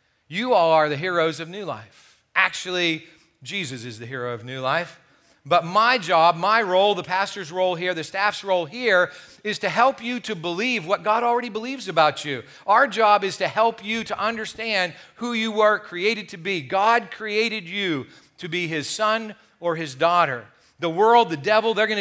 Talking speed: 195 wpm